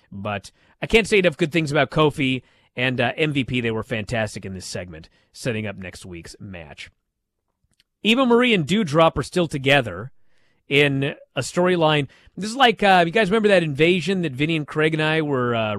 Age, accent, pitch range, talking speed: 30-49, American, 120-185 Hz, 190 wpm